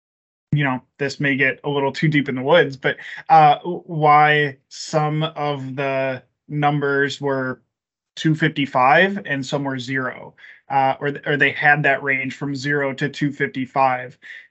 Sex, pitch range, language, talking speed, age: male, 135-155 Hz, English, 150 wpm, 20-39